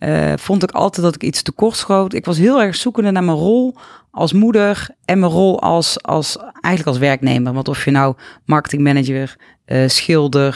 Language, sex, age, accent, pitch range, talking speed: English, female, 30-49, Dutch, 150-205 Hz, 200 wpm